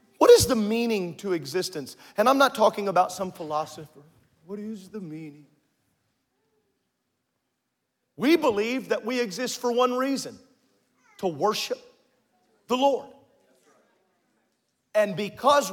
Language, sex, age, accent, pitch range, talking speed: English, male, 40-59, American, 175-235 Hz, 120 wpm